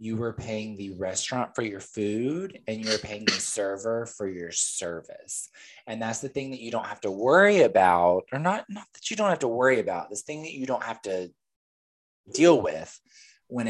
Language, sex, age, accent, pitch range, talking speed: English, male, 20-39, American, 110-175 Hz, 205 wpm